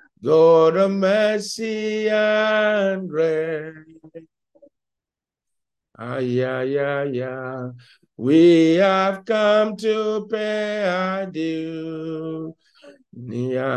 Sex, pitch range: male, 130-185 Hz